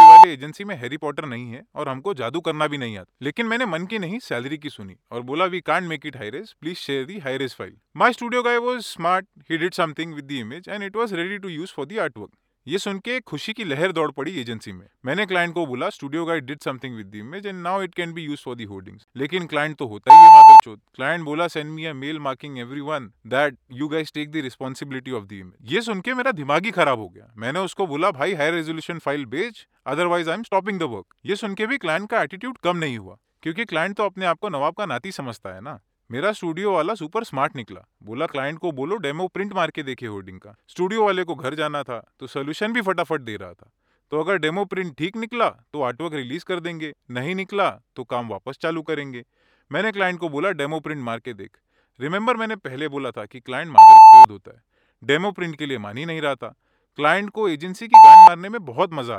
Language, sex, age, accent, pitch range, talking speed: Hindi, male, 30-49, native, 135-195 Hz, 230 wpm